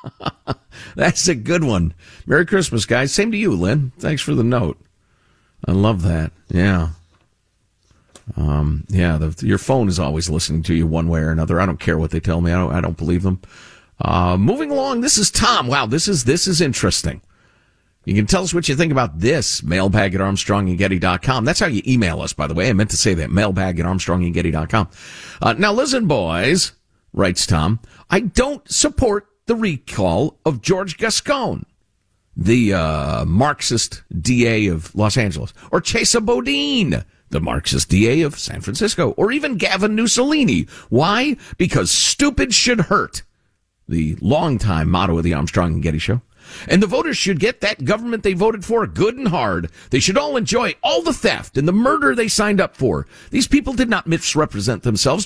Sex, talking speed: male, 180 wpm